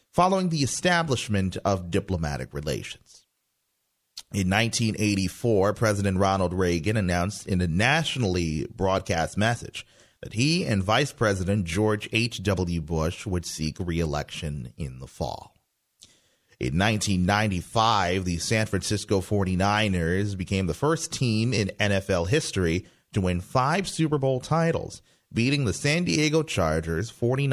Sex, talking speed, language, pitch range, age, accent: male, 120 wpm, English, 85-115 Hz, 30-49, American